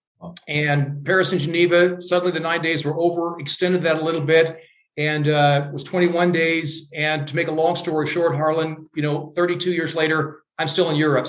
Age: 40-59